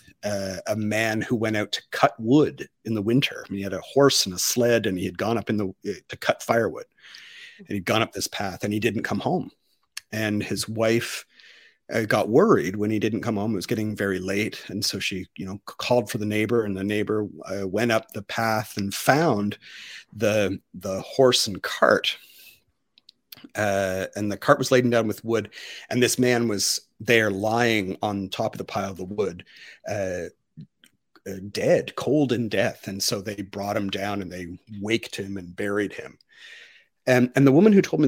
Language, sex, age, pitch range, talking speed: English, male, 40-59, 100-125 Hz, 210 wpm